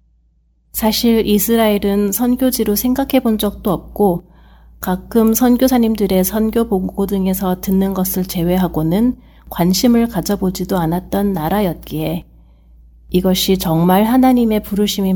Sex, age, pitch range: female, 40-59, 170-205 Hz